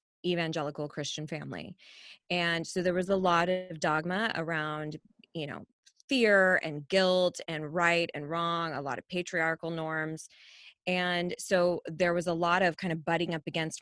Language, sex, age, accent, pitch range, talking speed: English, female, 20-39, American, 160-185 Hz, 165 wpm